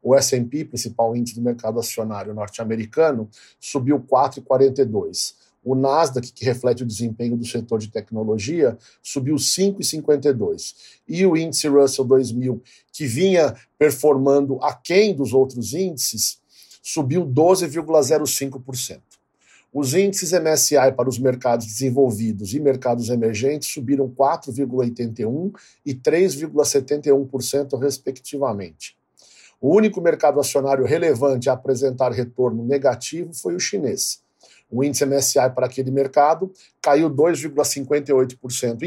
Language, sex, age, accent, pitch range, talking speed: Portuguese, male, 50-69, Brazilian, 125-150 Hz, 110 wpm